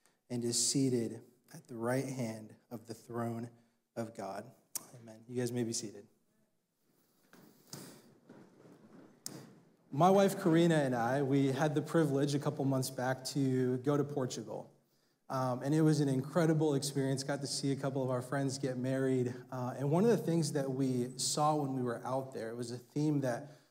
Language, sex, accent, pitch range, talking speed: English, male, American, 125-155 Hz, 180 wpm